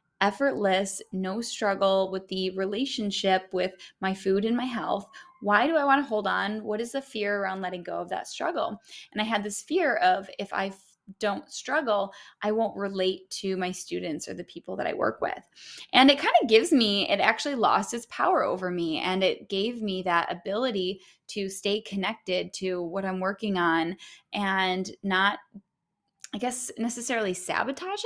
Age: 20-39